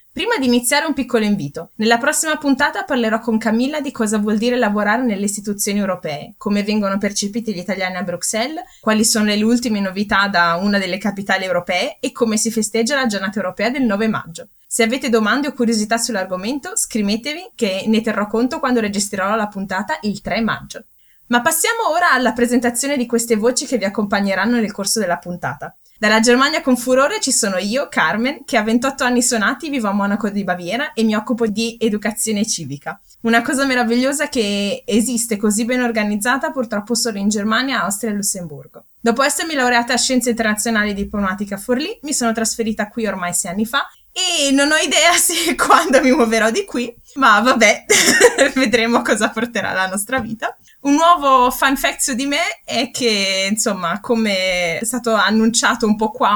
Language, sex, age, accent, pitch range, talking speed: Italian, female, 20-39, native, 200-255 Hz, 180 wpm